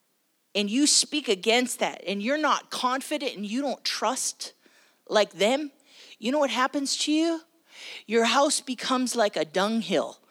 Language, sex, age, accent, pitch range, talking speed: English, female, 30-49, American, 230-310 Hz, 155 wpm